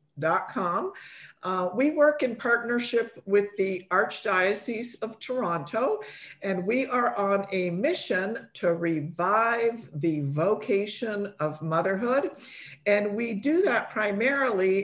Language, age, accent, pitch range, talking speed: English, 50-69, American, 180-240 Hz, 115 wpm